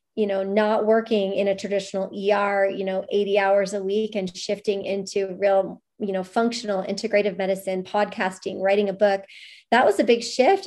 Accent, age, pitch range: American, 30-49, 205-255 Hz